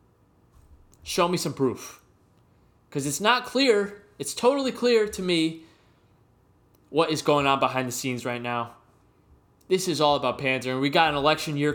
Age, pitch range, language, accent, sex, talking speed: 20-39, 125-165 Hz, English, American, male, 170 wpm